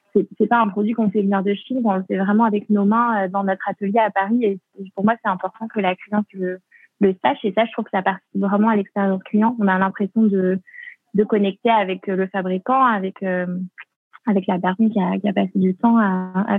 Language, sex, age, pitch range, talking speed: French, female, 20-39, 195-220 Hz, 240 wpm